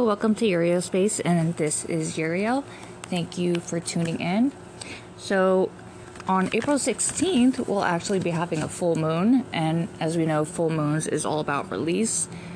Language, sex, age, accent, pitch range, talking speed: English, female, 20-39, American, 145-175 Hz, 160 wpm